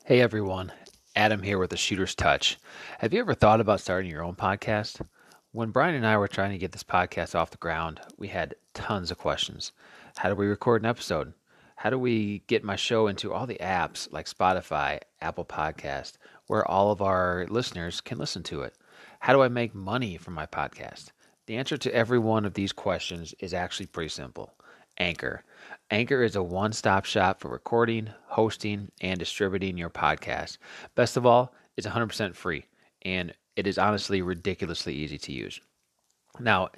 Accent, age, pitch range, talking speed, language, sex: American, 30-49, 90-115 Hz, 185 wpm, English, male